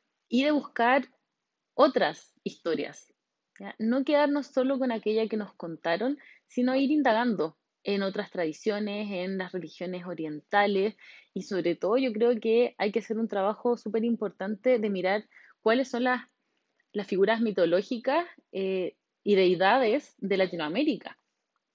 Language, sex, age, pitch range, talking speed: Spanish, female, 20-39, 190-245 Hz, 140 wpm